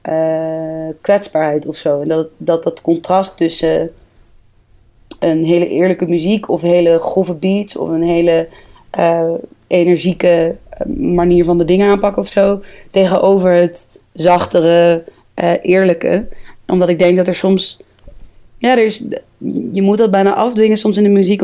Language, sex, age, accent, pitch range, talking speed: Dutch, female, 20-39, Dutch, 170-195 Hz, 150 wpm